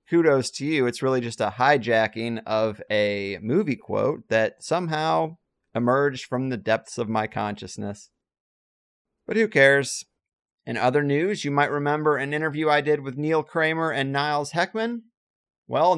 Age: 30-49